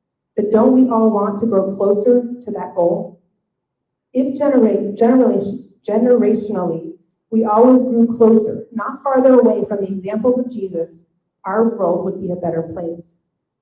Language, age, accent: English, 40-59, American